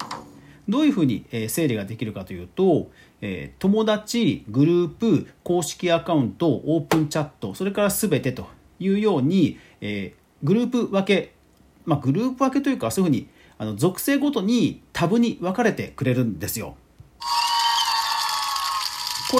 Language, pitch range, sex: Japanese, 120-205 Hz, male